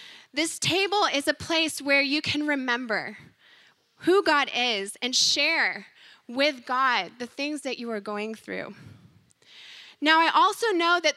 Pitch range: 240-305 Hz